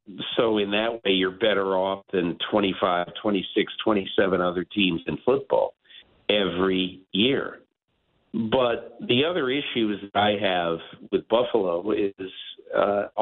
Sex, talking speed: male, 125 wpm